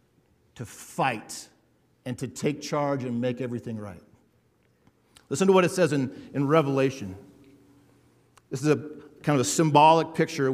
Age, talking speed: 50-69, 150 wpm